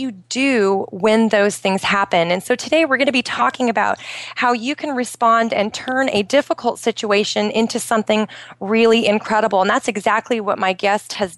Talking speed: 185 wpm